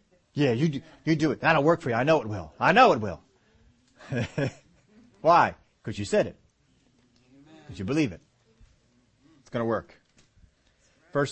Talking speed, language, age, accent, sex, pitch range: 170 wpm, English, 40-59, American, male, 140-200 Hz